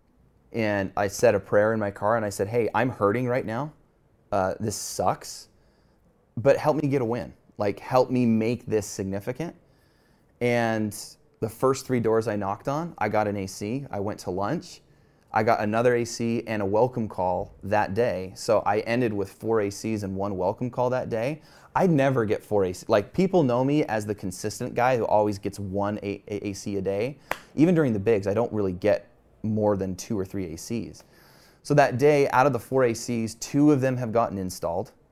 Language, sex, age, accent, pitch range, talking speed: English, male, 30-49, American, 100-130 Hz, 200 wpm